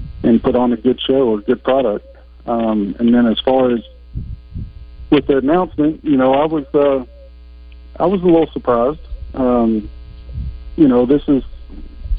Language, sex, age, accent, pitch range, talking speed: English, male, 50-69, American, 80-125 Hz, 165 wpm